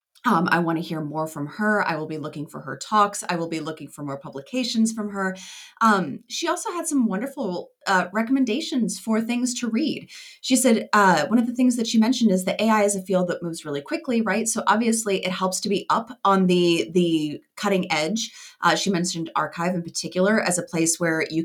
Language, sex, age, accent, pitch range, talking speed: English, female, 20-39, American, 180-240 Hz, 225 wpm